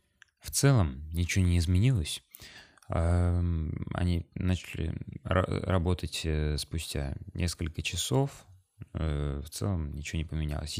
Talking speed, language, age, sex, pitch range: 90 wpm, Russian, 20-39, male, 80-95 Hz